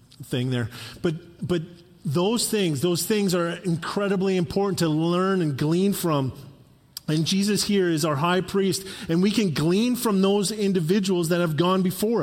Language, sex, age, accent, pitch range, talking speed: English, male, 40-59, American, 140-185 Hz, 165 wpm